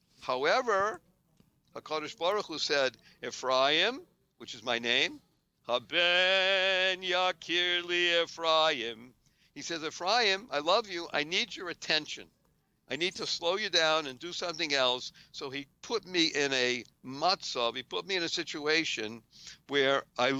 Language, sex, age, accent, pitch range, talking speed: English, male, 60-79, American, 130-175 Hz, 140 wpm